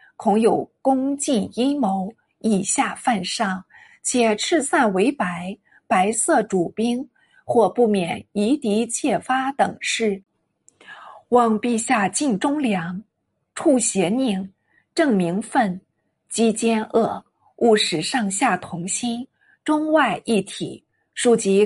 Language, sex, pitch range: Chinese, female, 195-265 Hz